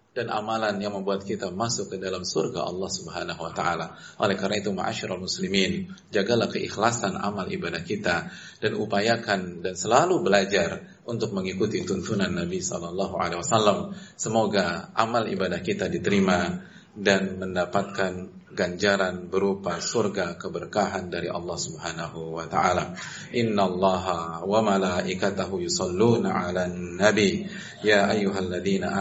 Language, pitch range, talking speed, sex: Indonesian, 95-115 Hz, 120 wpm, male